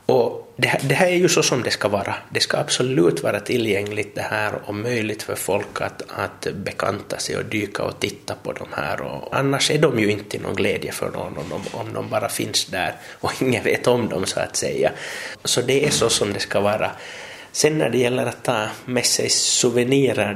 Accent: Finnish